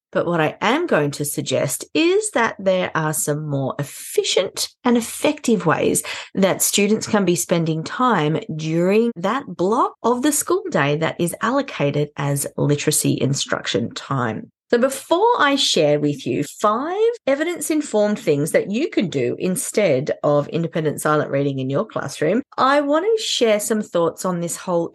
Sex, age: female, 30-49